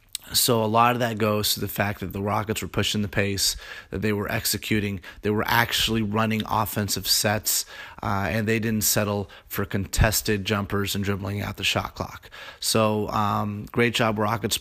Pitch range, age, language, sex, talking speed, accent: 100-110 Hz, 30-49, English, male, 185 wpm, American